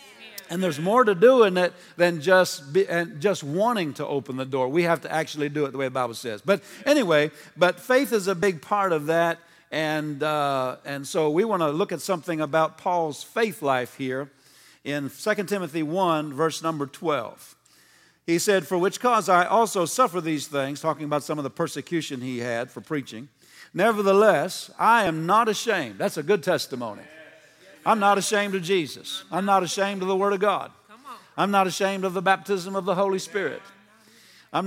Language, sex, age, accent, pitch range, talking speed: English, male, 50-69, American, 155-200 Hz, 195 wpm